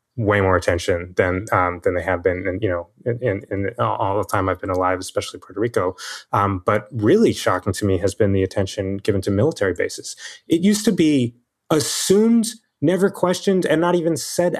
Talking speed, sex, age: 200 wpm, male, 30-49